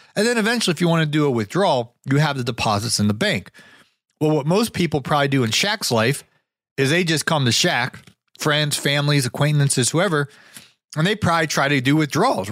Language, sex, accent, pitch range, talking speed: English, male, American, 120-160 Hz, 205 wpm